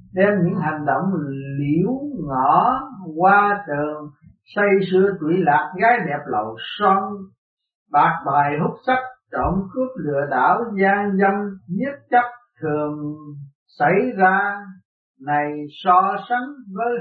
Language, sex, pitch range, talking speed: Vietnamese, male, 155-225 Hz, 125 wpm